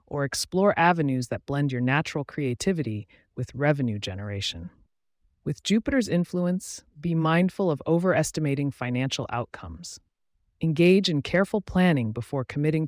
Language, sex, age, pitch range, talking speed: English, female, 30-49, 120-160 Hz, 120 wpm